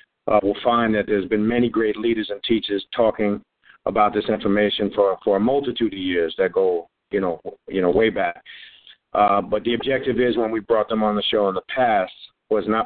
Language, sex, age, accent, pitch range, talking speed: English, male, 50-69, American, 105-120 Hz, 210 wpm